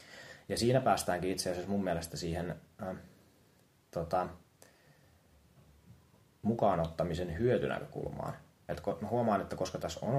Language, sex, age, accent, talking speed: Finnish, male, 30-49, native, 105 wpm